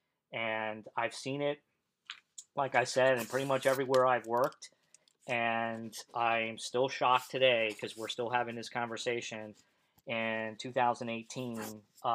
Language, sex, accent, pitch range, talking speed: English, male, American, 115-130 Hz, 130 wpm